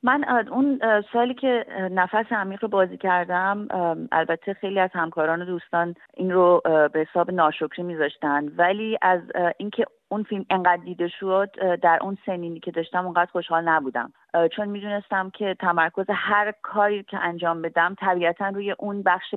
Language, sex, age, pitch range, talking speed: Persian, female, 30-49, 170-210 Hz, 160 wpm